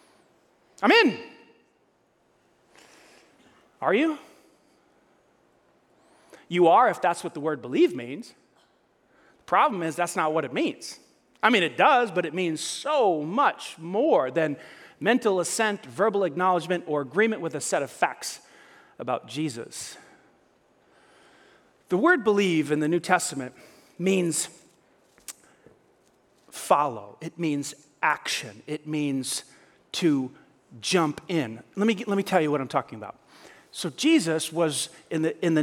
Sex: male